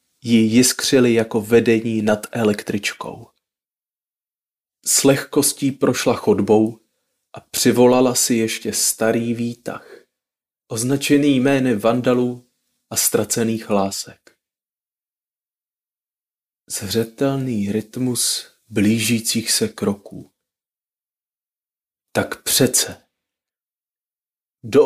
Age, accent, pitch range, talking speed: 30-49, native, 110-125 Hz, 70 wpm